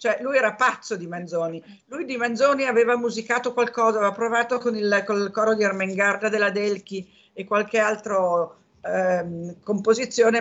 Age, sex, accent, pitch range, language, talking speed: 50-69, female, native, 165-210 Hz, Italian, 160 wpm